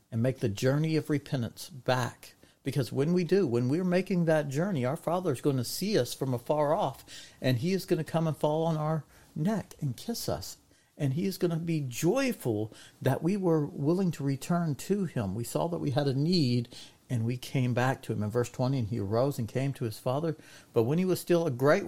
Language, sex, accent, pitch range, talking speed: English, male, American, 135-175 Hz, 235 wpm